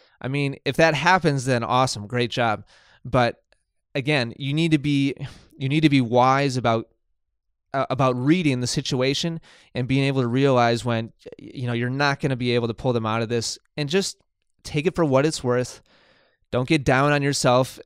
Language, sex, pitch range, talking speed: English, male, 115-140 Hz, 200 wpm